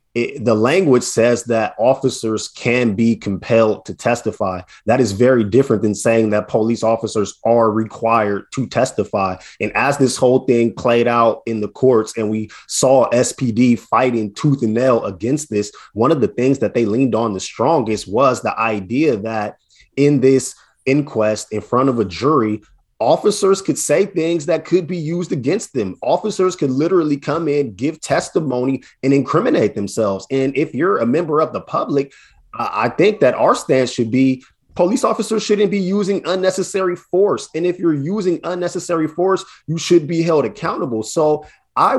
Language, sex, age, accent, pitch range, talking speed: English, male, 20-39, American, 110-145 Hz, 170 wpm